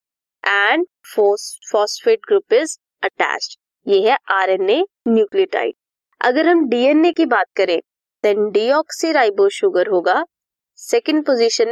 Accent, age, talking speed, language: Indian, 20-39, 115 wpm, English